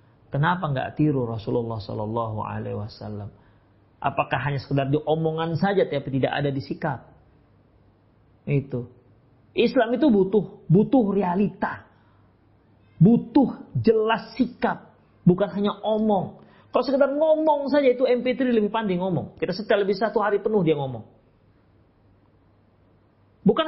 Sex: male